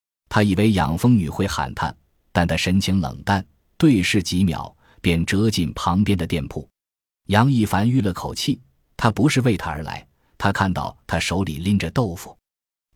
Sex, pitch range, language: male, 85-110 Hz, Chinese